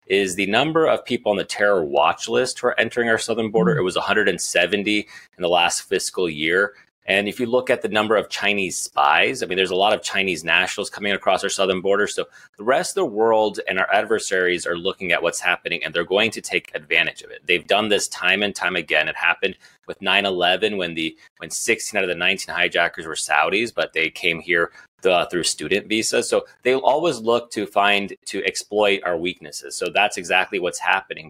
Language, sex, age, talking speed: English, male, 30-49, 220 wpm